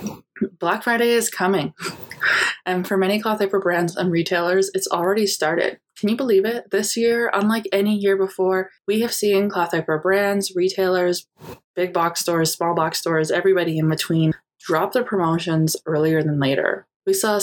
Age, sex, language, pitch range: 20-39, female, English, 170-200 Hz